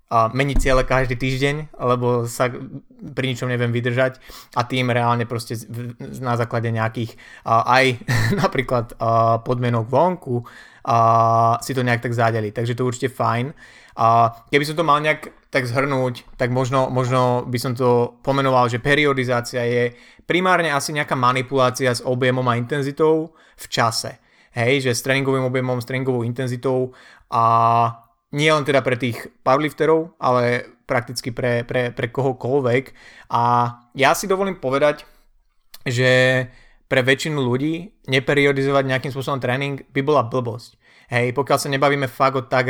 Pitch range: 120-135 Hz